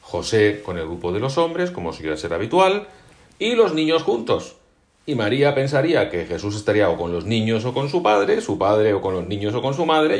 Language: Spanish